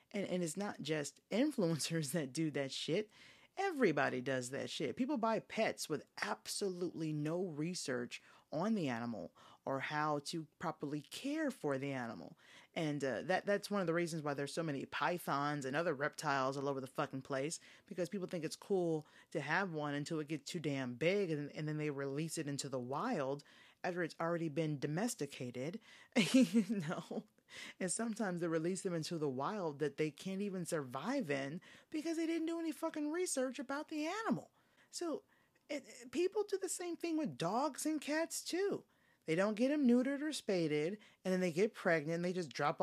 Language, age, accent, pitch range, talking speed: English, 30-49, American, 150-230 Hz, 190 wpm